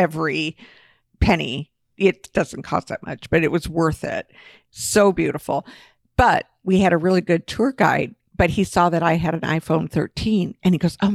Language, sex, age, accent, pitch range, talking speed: English, female, 50-69, American, 170-230 Hz, 190 wpm